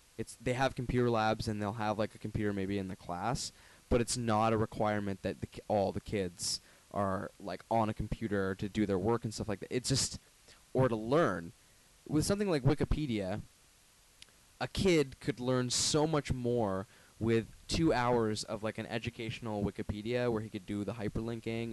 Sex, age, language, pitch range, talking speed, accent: male, 10-29, English, 105-125 Hz, 190 wpm, American